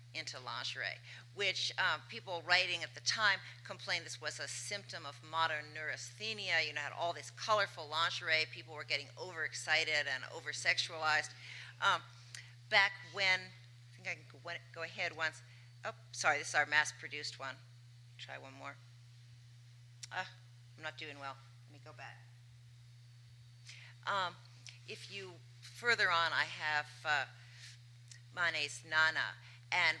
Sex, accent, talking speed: female, American, 140 wpm